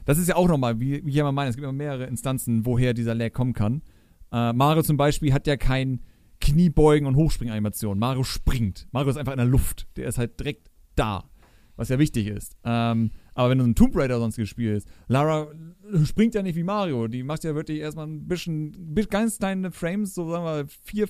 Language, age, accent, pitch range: German, 40-59, German, 110-160 Hz